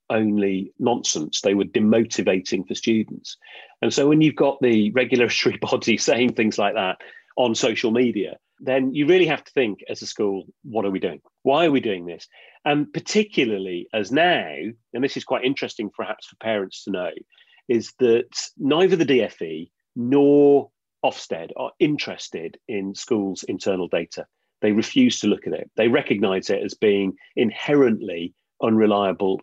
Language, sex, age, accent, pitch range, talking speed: English, male, 40-59, British, 100-140 Hz, 165 wpm